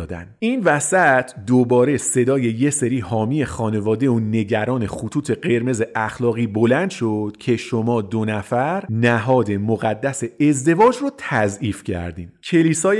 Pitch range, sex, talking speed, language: 125-180 Hz, male, 125 wpm, Persian